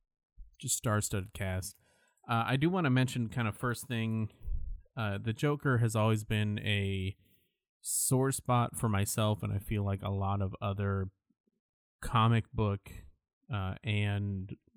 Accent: American